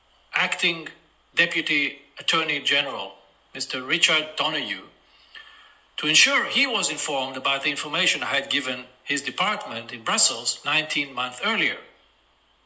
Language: English